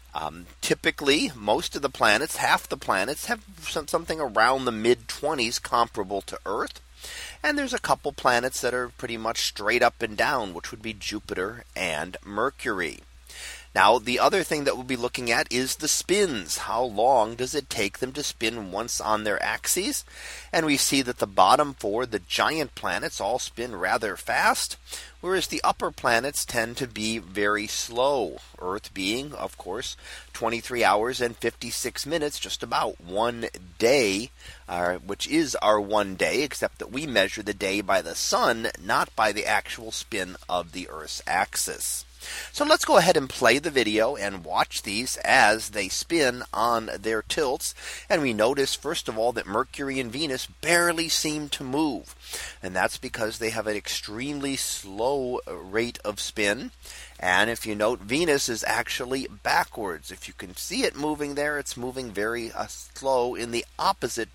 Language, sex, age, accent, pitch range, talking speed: English, male, 30-49, American, 110-140 Hz, 170 wpm